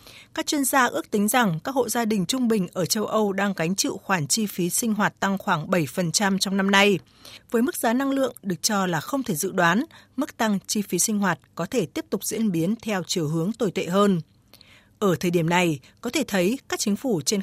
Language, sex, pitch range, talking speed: Vietnamese, female, 175-225 Hz, 240 wpm